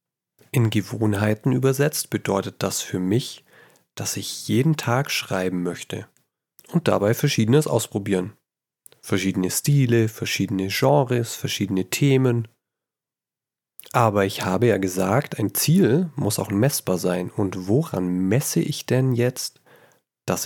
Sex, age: male, 30-49